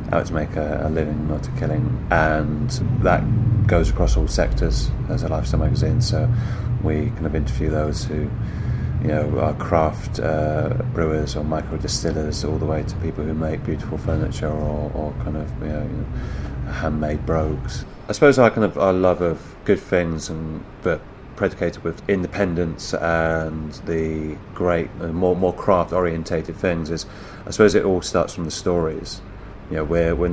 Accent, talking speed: British, 180 wpm